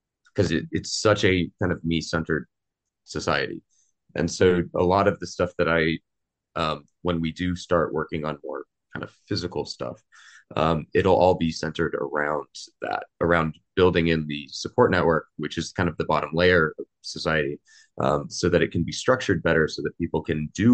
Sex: male